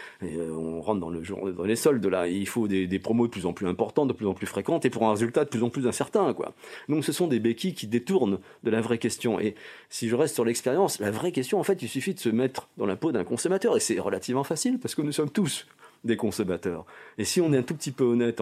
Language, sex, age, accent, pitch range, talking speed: French, male, 40-59, French, 105-155 Hz, 285 wpm